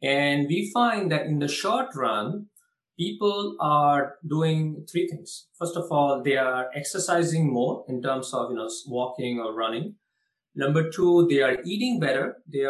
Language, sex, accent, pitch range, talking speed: English, male, Indian, 135-170 Hz, 165 wpm